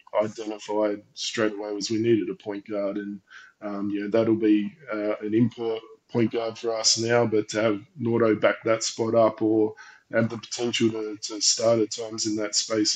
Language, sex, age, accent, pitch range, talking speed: English, male, 20-39, Australian, 105-115 Hz, 205 wpm